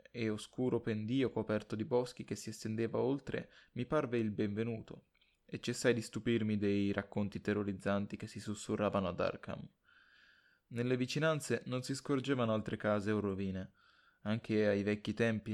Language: Italian